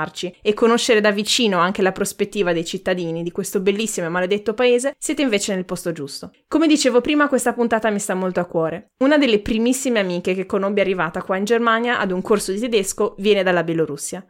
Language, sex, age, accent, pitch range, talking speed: Italian, female, 20-39, native, 190-240 Hz, 200 wpm